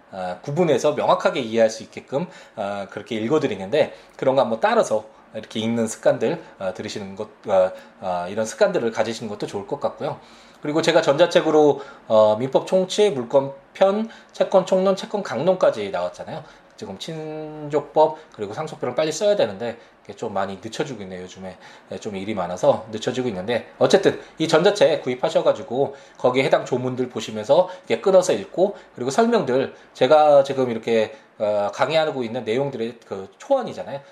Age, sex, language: 20-39, male, Korean